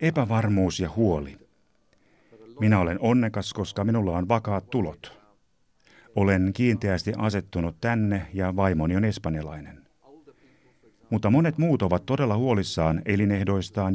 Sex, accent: male, native